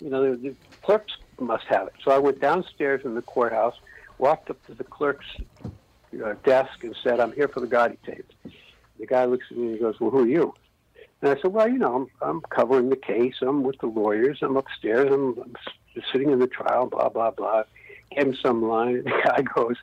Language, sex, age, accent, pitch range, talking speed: English, male, 60-79, American, 125-200 Hz, 230 wpm